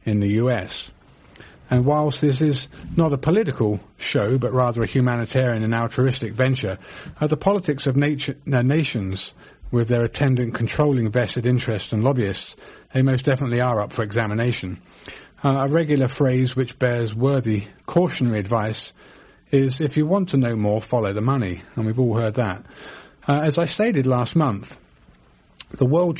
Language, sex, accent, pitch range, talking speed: English, male, British, 110-135 Hz, 165 wpm